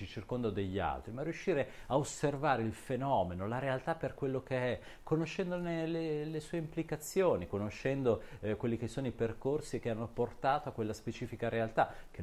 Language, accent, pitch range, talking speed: Italian, native, 105-130 Hz, 170 wpm